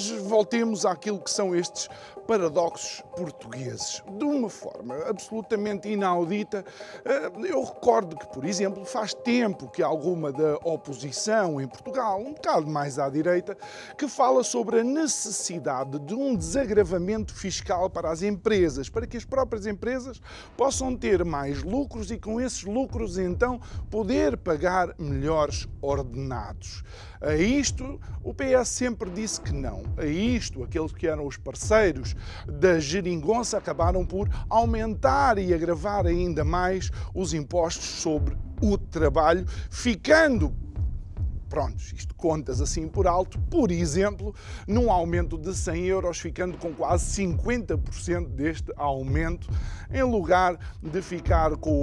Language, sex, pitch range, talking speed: Portuguese, male, 160-225 Hz, 130 wpm